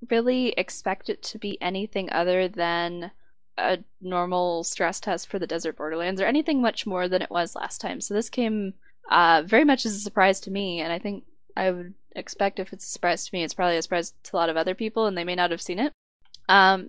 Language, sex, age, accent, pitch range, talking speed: English, female, 10-29, American, 175-220 Hz, 235 wpm